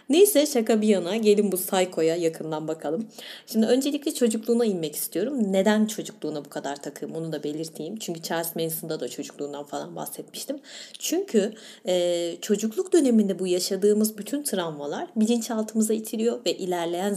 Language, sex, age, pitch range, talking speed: Turkish, female, 30-49, 165-225 Hz, 145 wpm